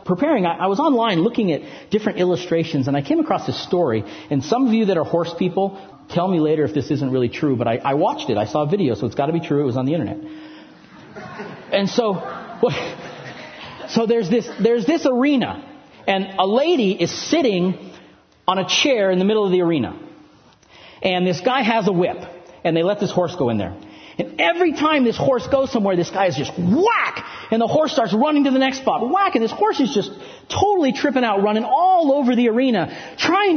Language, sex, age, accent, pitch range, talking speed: English, male, 40-59, American, 175-290 Hz, 220 wpm